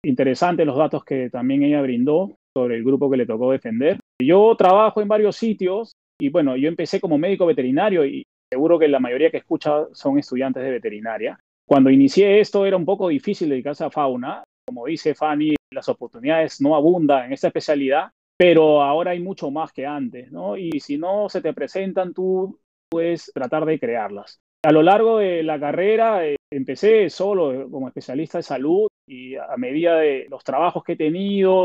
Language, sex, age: Spanish, male, 30-49